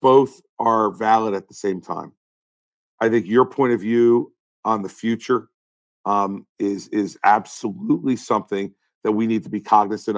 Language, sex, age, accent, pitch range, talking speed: English, male, 50-69, American, 105-130 Hz, 160 wpm